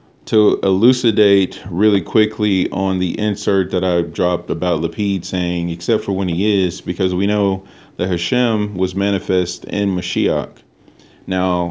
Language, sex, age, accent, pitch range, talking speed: English, male, 40-59, American, 90-105 Hz, 145 wpm